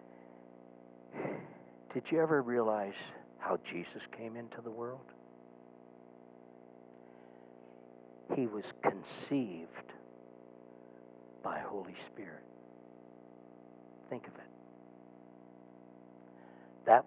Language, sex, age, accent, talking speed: English, male, 60-79, American, 70 wpm